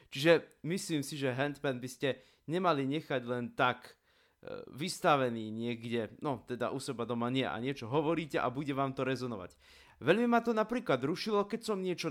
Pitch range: 115-155 Hz